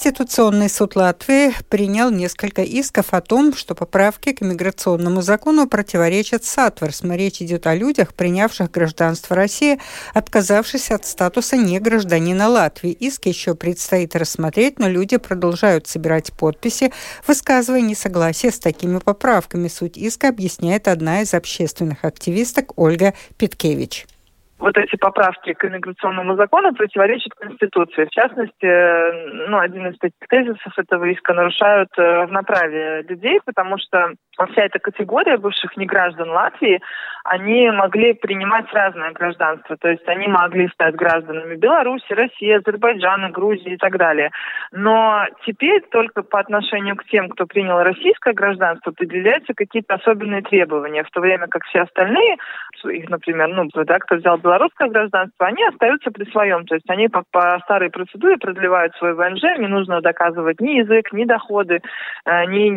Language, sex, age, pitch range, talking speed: Russian, female, 60-79, 175-225 Hz, 140 wpm